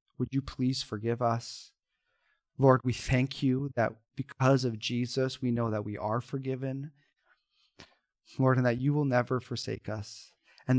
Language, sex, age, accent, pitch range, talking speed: English, male, 30-49, American, 115-145 Hz, 155 wpm